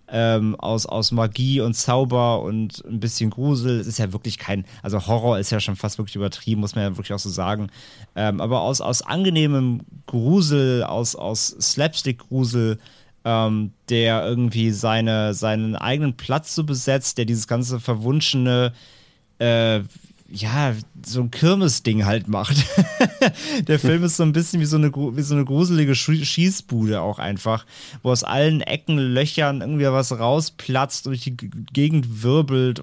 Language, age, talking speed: German, 30-49, 160 wpm